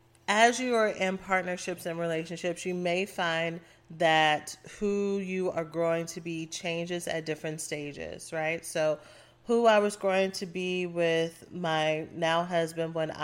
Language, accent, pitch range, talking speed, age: English, American, 145-165 Hz, 155 wpm, 30-49